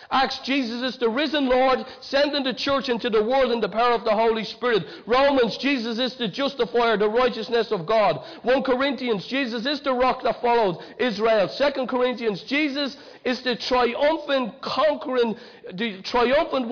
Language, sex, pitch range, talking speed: English, male, 225-260 Hz, 165 wpm